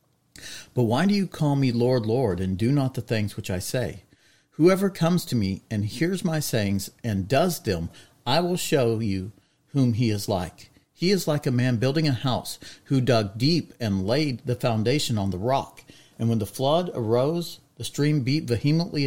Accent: American